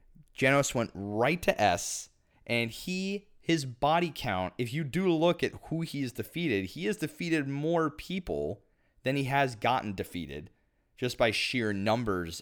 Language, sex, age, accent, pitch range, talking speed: English, male, 30-49, American, 100-140 Hz, 160 wpm